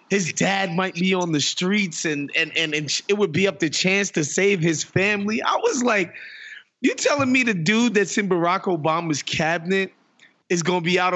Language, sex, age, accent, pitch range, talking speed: English, male, 20-39, American, 170-225 Hz, 210 wpm